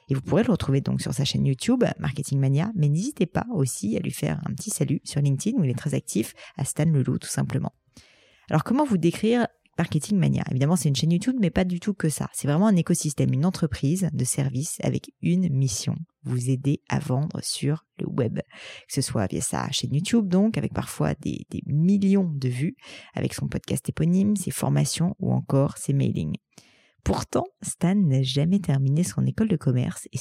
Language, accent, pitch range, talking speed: French, French, 135-180 Hz, 205 wpm